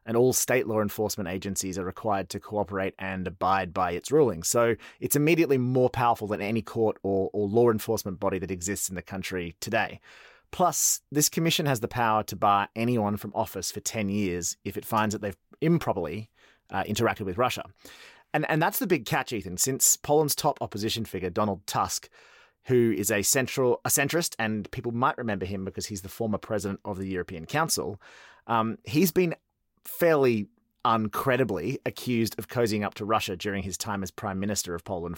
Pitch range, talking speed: 100-125 Hz, 190 wpm